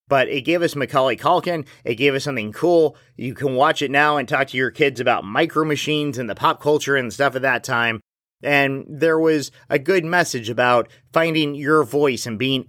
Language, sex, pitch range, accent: English, male, 125-150 Hz, American